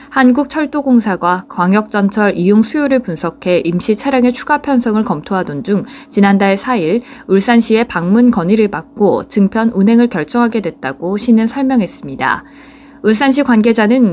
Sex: female